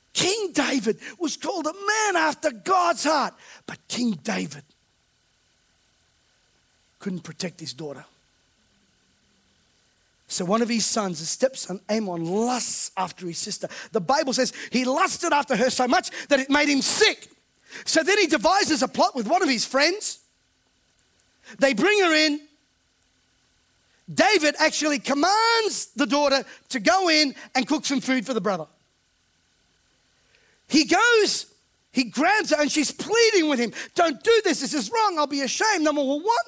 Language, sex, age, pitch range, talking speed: English, male, 40-59, 200-320 Hz, 155 wpm